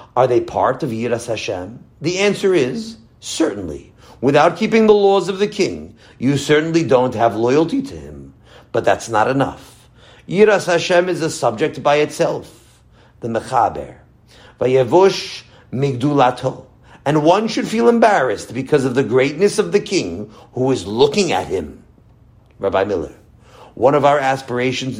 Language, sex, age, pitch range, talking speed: English, male, 50-69, 125-175 Hz, 150 wpm